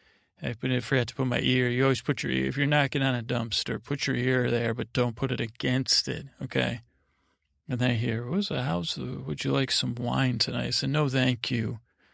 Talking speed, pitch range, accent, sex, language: 230 wpm, 115-130 Hz, American, male, English